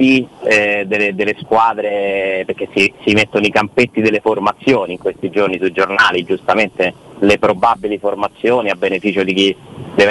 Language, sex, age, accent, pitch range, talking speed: Italian, male, 30-49, native, 100-120 Hz, 155 wpm